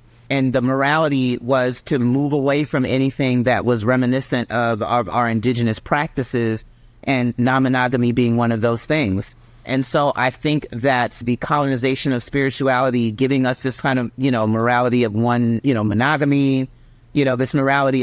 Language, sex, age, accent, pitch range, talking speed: English, male, 30-49, American, 120-140 Hz, 165 wpm